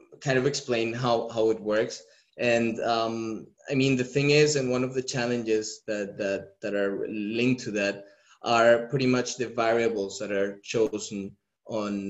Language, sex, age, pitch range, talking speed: English, male, 20-39, 105-125 Hz, 175 wpm